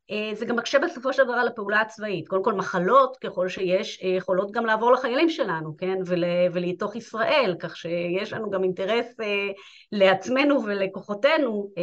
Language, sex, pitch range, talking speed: Hebrew, female, 180-235 Hz, 140 wpm